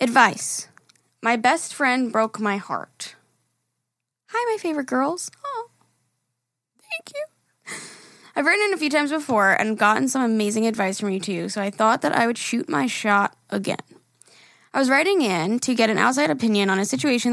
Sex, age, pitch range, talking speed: female, 10-29, 200-245 Hz, 175 wpm